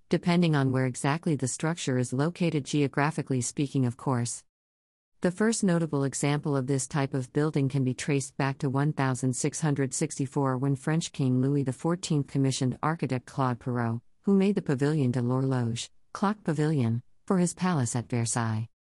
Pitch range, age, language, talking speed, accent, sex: 130-155 Hz, 50-69, English, 155 wpm, American, female